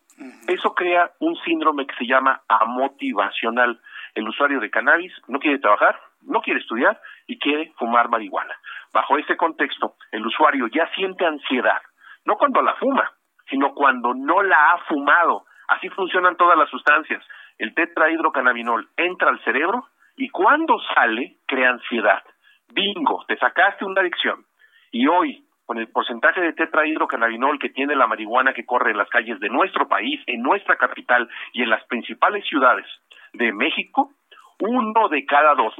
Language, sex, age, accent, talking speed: Spanish, male, 50-69, Mexican, 155 wpm